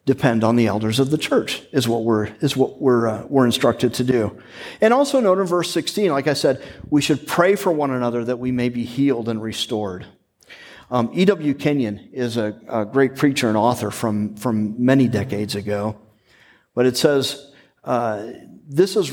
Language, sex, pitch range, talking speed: English, male, 115-160 Hz, 190 wpm